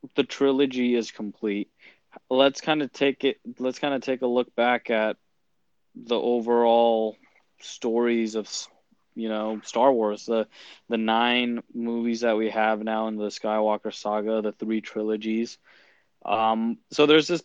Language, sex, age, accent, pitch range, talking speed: English, male, 20-39, American, 115-130 Hz, 150 wpm